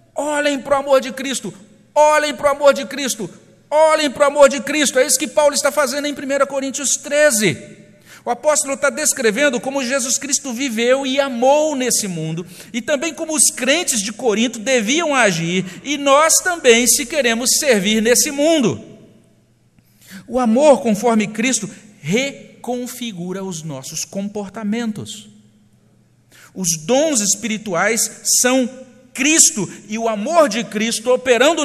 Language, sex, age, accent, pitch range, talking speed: Portuguese, male, 50-69, Brazilian, 160-270 Hz, 145 wpm